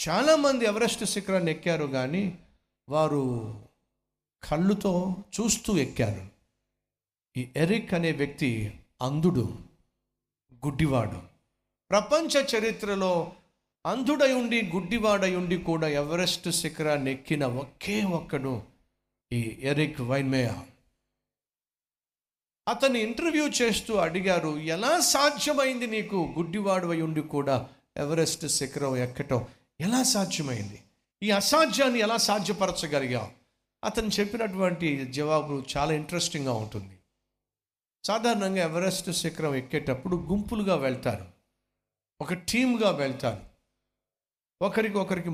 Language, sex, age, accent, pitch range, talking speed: Telugu, male, 50-69, native, 135-200 Hz, 75 wpm